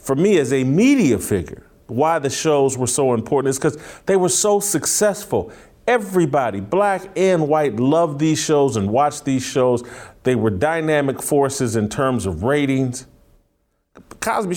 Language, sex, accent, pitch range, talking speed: English, male, American, 130-185 Hz, 155 wpm